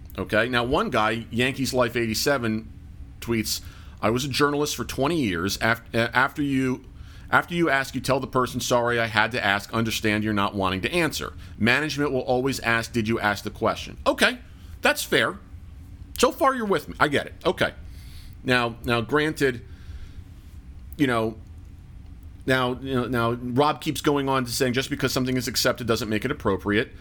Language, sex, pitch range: English, male, 90-130 Hz